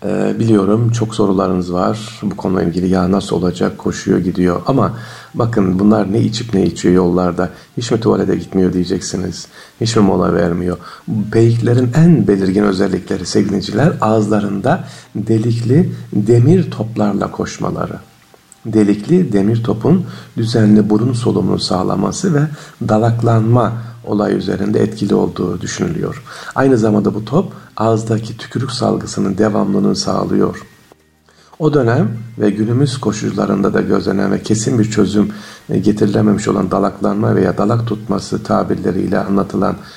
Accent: native